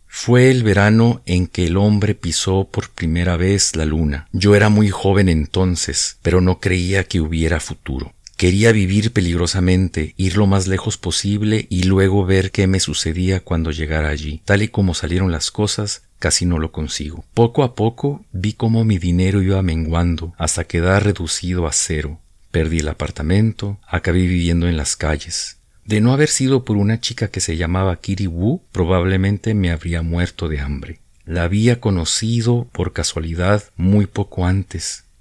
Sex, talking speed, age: male, 170 wpm, 50-69